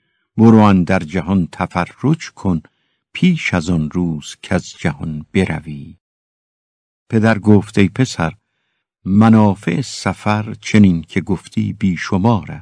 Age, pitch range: 60-79, 95-120 Hz